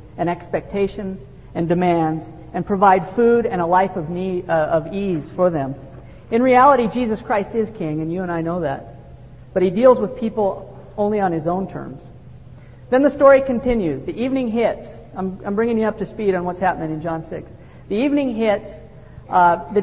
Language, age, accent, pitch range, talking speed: English, 50-69, American, 175-225 Hz, 190 wpm